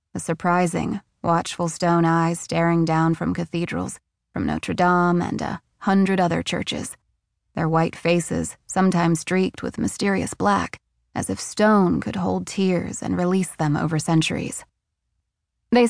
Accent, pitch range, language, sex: American, 160-185 Hz, English, female